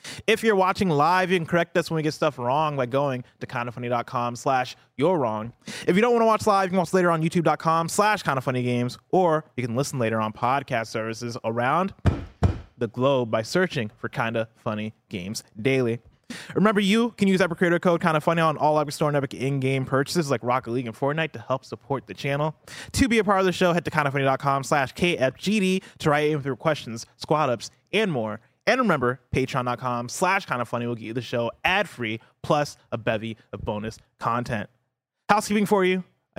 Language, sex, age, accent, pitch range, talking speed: English, male, 20-39, American, 120-160 Hz, 195 wpm